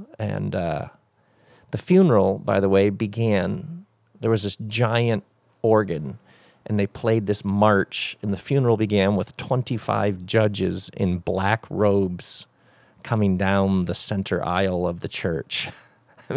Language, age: English, 40-59